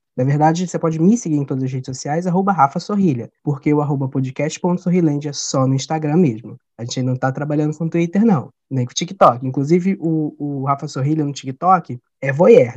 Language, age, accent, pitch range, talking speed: Portuguese, 20-39, Brazilian, 145-200 Hz, 210 wpm